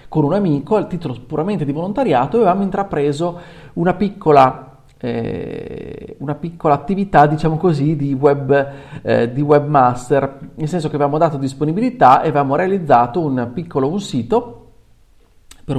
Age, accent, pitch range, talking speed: 40-59, native, 130-175 Hz, 140 wpm